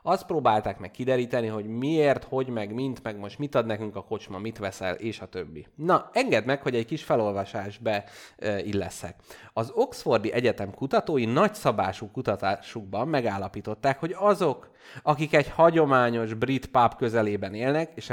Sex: male